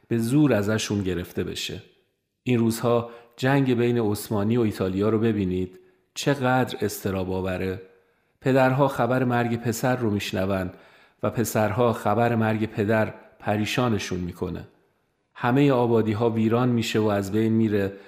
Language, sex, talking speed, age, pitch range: Persian, male, 125 wpm, 40-59, 105-125 Hz